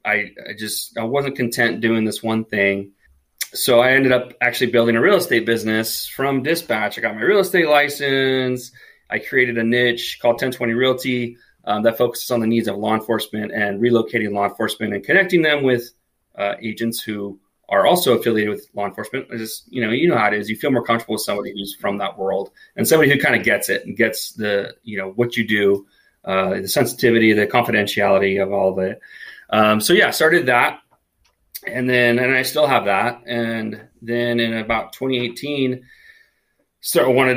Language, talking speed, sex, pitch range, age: English, 195 wpm, male, 105-125 Hz, 30-49